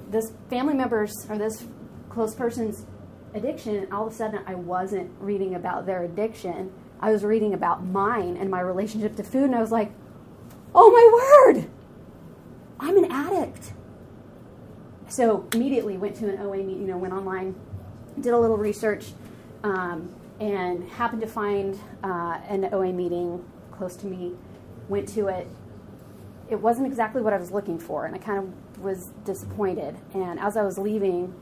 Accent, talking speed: American, 170 wpm